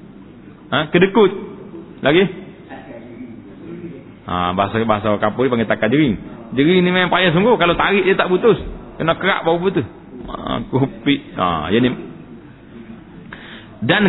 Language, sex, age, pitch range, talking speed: Malay, male, 40-59, 130-180 Hz, 125 wpm